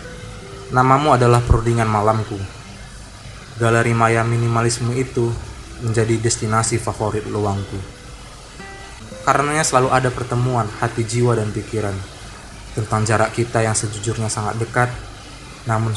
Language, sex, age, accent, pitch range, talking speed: Indonesian, male, 20-39, native, 105-125 Hz, 105 wpm